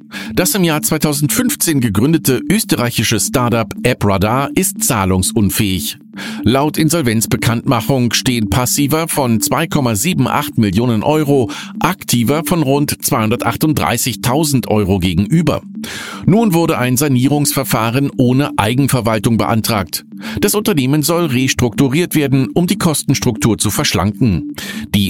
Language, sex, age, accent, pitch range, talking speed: German, male, 50-69, German, 110-160 Hz, 100 wpm